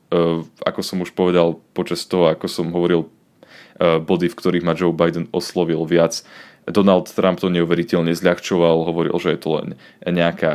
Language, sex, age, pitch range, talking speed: Slovak, male, 20-39, 85-95 Hz, 160 wpm